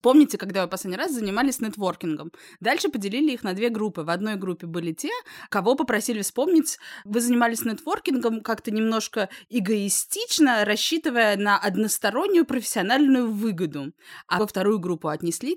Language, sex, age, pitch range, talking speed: Russian, female, 20-39, 190-265 Hz, 145 wpm